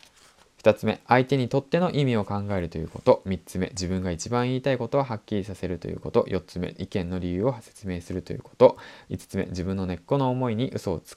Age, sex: 20-39, male